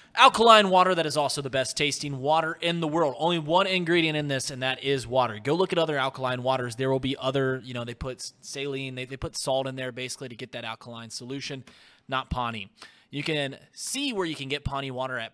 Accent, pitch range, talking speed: American, 125-155 Hz, 235 wpm